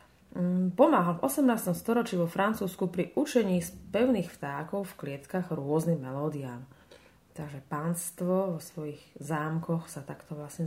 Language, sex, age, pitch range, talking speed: Slovak, female, 30-49, 160-200 Hz, 130 wpm